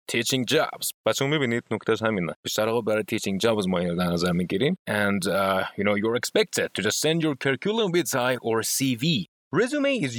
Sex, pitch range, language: male, 110-160 Hz, Persian